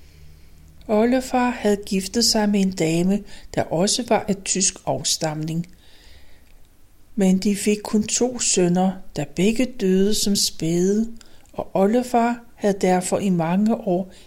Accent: native